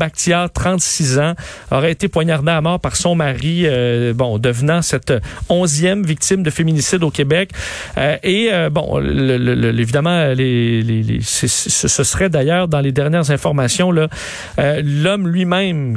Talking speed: 130 wpm